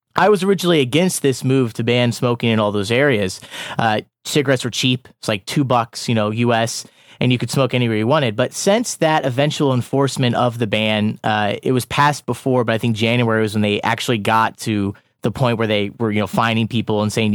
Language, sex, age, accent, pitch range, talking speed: English, male, 30-49, American, 115-145 Hz, 225 wpm